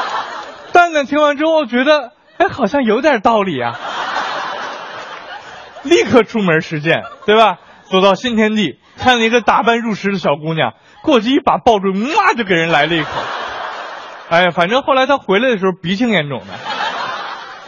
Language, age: Chinese, 20-39